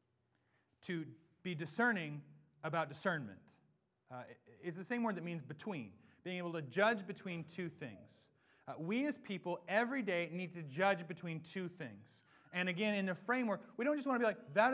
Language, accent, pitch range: English, American, 140-210 Hz